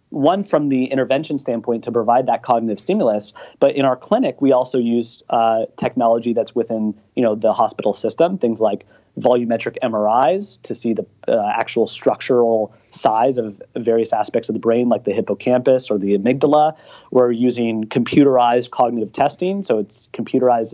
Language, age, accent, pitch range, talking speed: English, 30-49, American, 115-135 Hz, 165 wpm